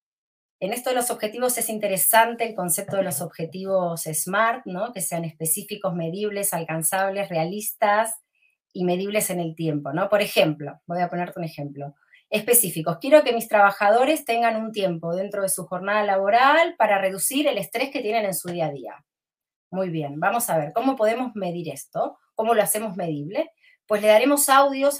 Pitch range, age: 175-230 Hz, 30-49